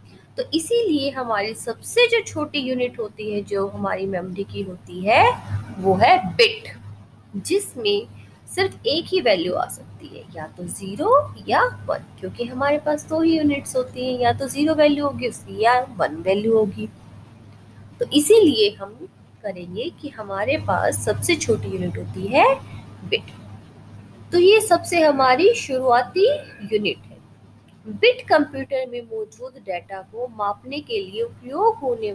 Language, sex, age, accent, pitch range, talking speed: Hindi, female, 20-39, native, 185-295 Hz, 145 wpm